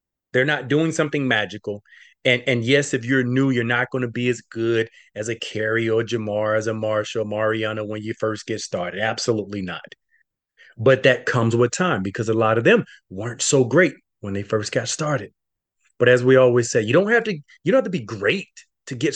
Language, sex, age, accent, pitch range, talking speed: English, male, 30-49, American, 115-175 Hz, 215 wpm